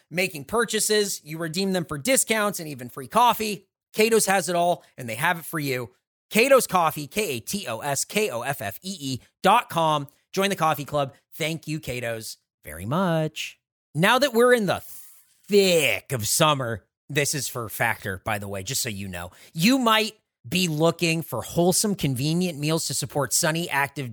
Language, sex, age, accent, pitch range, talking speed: English, male, 30-49, American, 145-190 Hz, 165 wpm